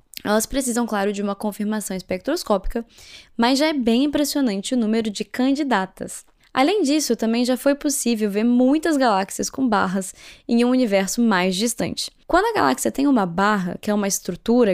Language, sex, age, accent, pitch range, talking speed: Portuguese, female, 10-29, Brazilian, 195-255 Hz, 170 wpm